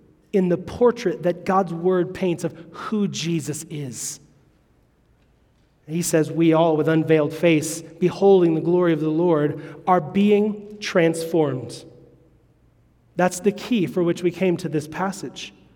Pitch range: 160-200 Hz